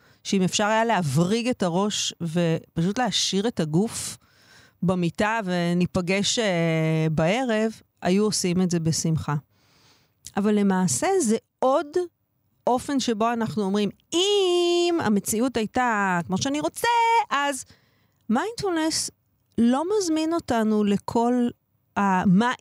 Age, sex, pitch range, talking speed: 40-59, female, 175-245 Hz, 105 wpm